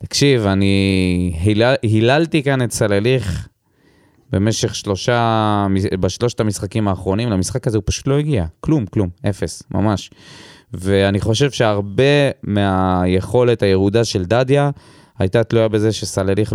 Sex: male